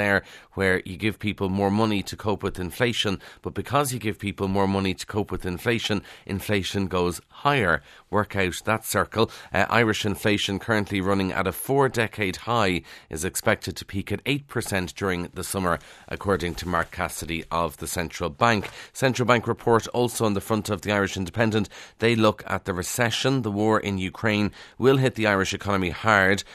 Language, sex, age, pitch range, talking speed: English, male, 30-49, 90-110 Hz, 185 wpm